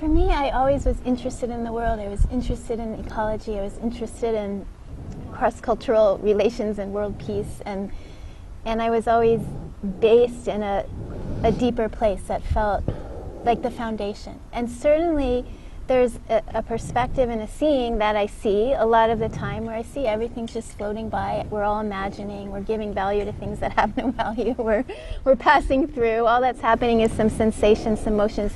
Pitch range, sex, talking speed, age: 215-245 Hz, female, 185 wpm, 30-49